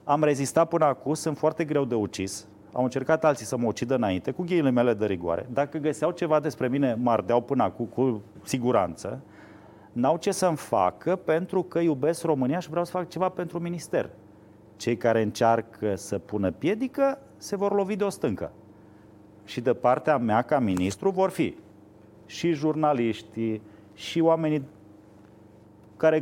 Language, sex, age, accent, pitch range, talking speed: Romanian, male, 30-49, native, 110-165 Hz, 165 wpm